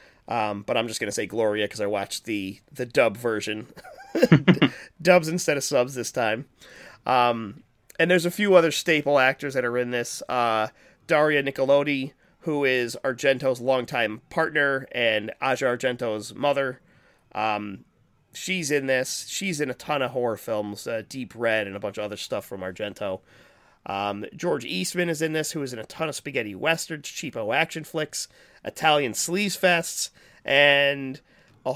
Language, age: English, 30-49